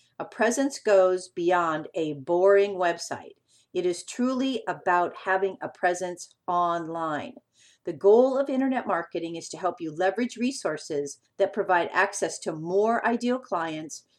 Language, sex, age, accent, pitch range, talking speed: English, female, 50-69, American, 175-235 Hz, 140 wpm